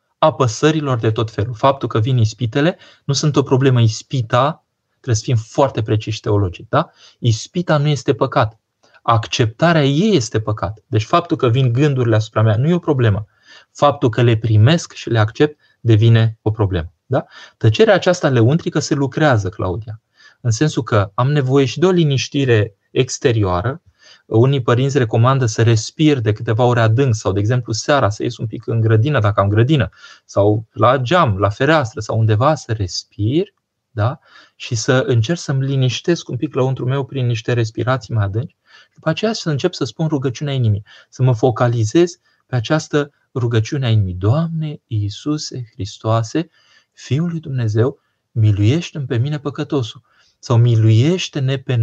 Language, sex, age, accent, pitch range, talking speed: Romanian, male, 20-39, native, 110-145 Hz, 165 wpm